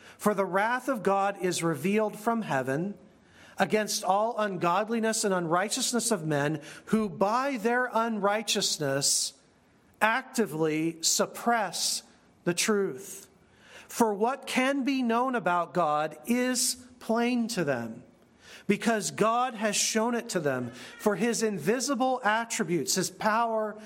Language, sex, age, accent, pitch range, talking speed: English, male, 40-59, American, 170-230 Hz, 120 wpm